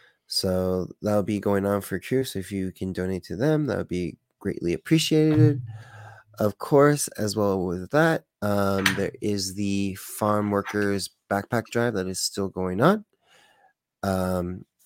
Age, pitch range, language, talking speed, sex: 30-49, 95-115 Hz, English, 160 wpm, male